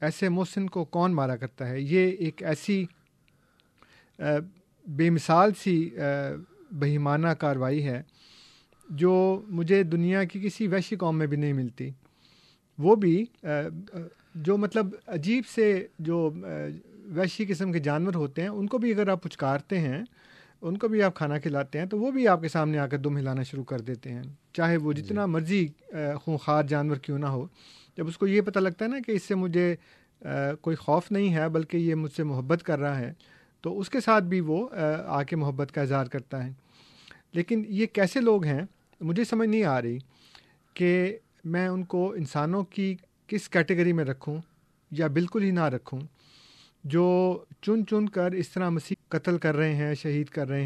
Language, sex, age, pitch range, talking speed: Urdu, male, 40-59, 150-190 Hz, 180 wpm